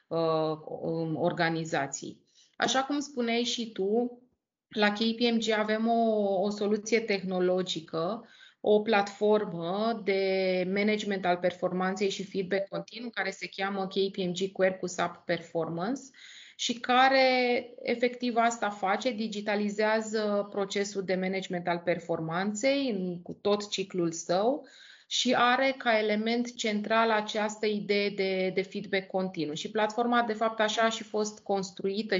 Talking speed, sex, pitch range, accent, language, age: 120 wpm, female, 190-225 Hz, native, Romanian, 20-39